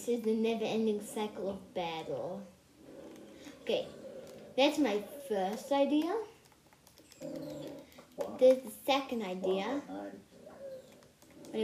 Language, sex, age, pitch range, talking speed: English, female, 10-29, 210-285 Hz, 95 wpm